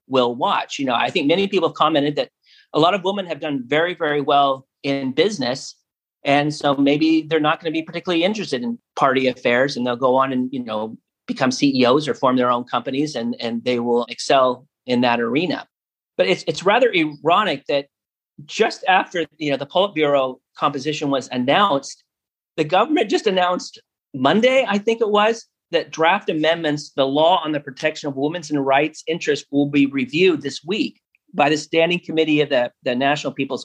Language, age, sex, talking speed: English, 40-59, male, 195 wpm